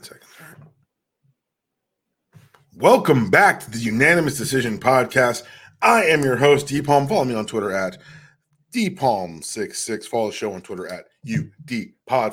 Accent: American